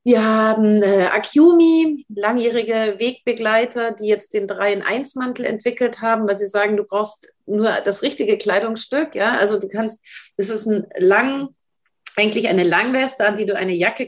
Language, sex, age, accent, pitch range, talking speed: German, female, 40-59, German, 205-240 Hz, 160 wpm